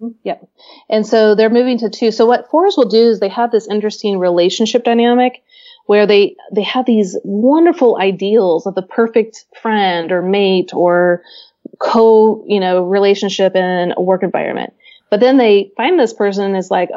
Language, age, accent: English, 30-49, American